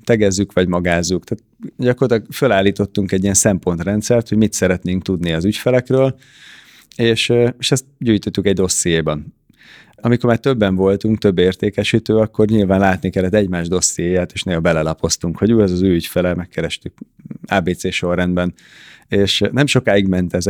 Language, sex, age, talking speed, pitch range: Hungarian, male, 30-49, 145 wpm, 90-110 Hz